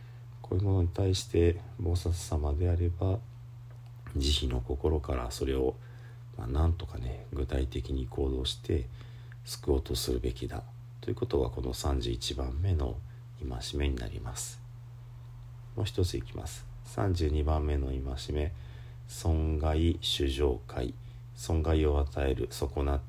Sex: male